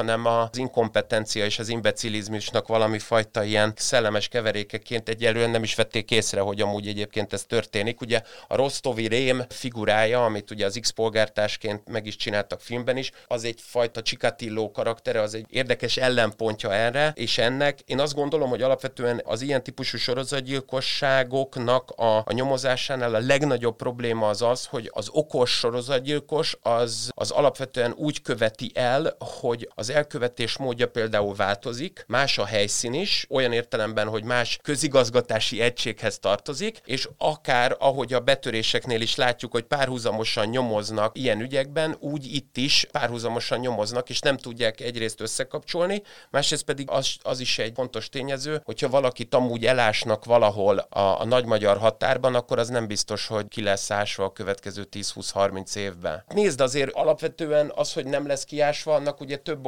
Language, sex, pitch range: Hungarian, male, 110-135 Hz